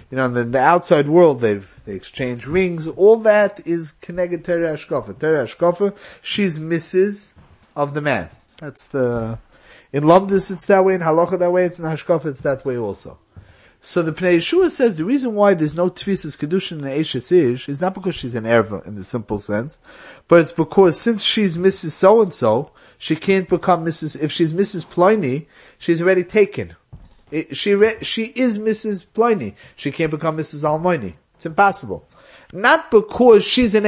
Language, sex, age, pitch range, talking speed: English, male, 30-49, 135-190 Hz, 175 wpm